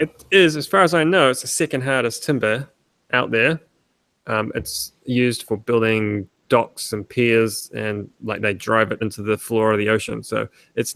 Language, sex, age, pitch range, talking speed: English, male, 20-39, 110-125 Hz, 190 wpm